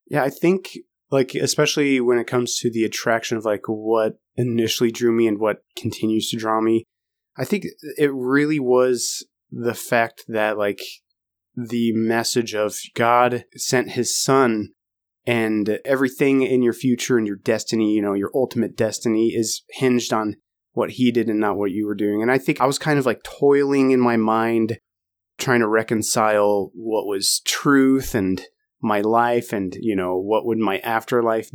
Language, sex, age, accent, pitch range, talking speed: English, male, 30-49, American, 110-125 Hz, 175 wpm